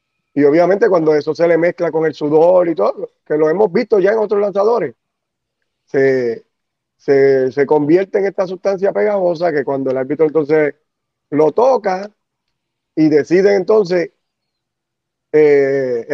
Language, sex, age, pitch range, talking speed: Spanish, male, 30-49, 155-205 Hz, 140 wpm